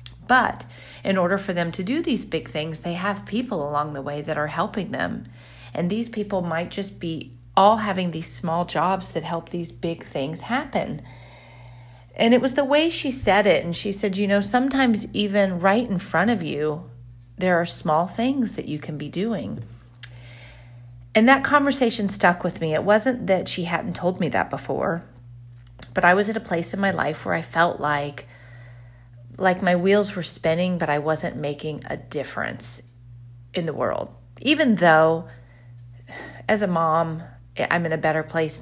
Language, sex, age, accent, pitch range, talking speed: English, female, 40-59, American, 120-185 Hz, 185 wpm